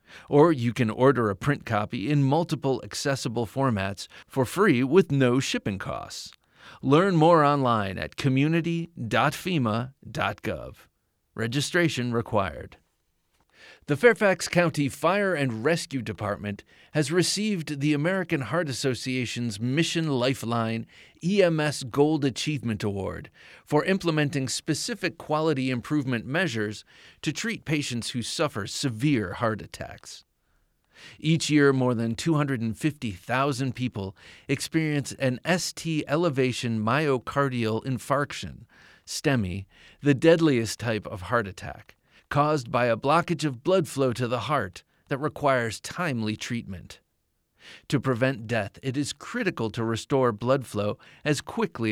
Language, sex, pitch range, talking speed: English, male, 115-150 Hz, 120 wpm